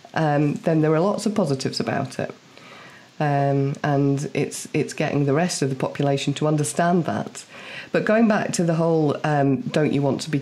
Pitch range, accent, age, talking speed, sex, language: 140-175 Hz, British, 40-59, 195 wpm, female, English